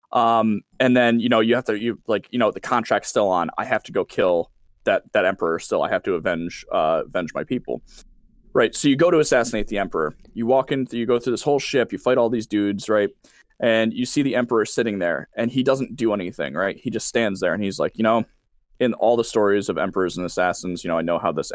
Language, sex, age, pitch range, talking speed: English, male, 20-39, 100-130 Hz, 255 wpm